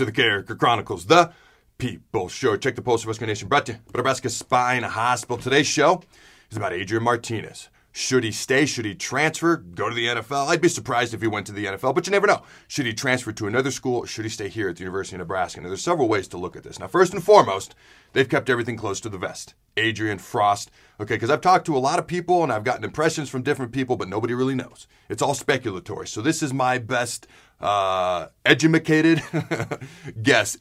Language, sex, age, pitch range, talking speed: English, male, 40-59, 105-145 Hz, 220 wpm